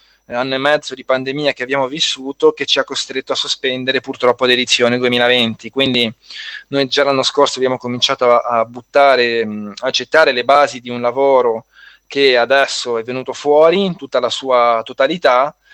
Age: 20-39